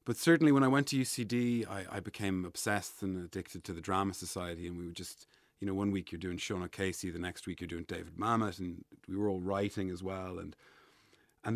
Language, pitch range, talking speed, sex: English, 95-115 Hz, 235 wpm, male